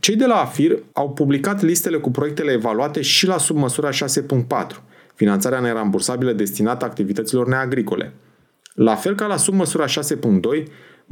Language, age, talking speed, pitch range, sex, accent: Romanian, 30-49, 135 wpm, 115-165 Hz, male, native